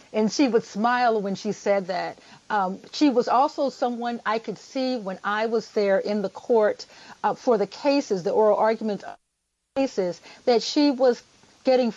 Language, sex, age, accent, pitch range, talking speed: English, female, 50-69, American, 205-255 Hz, 175 wpm